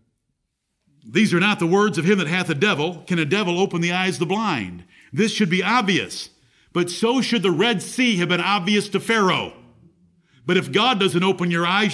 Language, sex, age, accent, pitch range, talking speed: English, male, 50-69, American, 165-210 Hz, 210 wpm